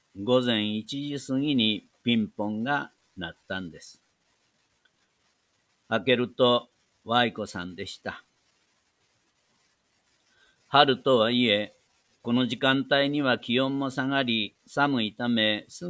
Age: 50-69